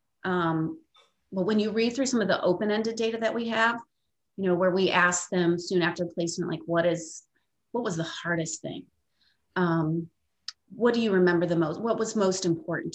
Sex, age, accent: female, 30-49, American